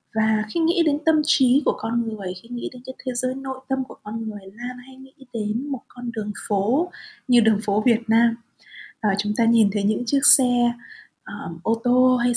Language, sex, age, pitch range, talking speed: Vietnamese, female, 20-39, 215-265 Hz, 225 wpm